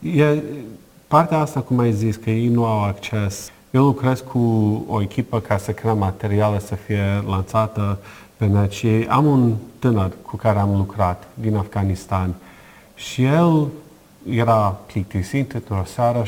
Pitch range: 105-130 Hz